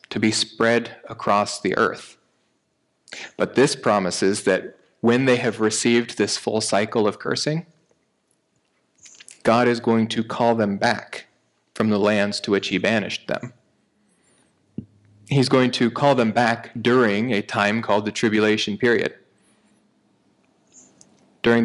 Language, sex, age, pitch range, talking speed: English, male, 30-49, 110-125 Hz, 135 wpm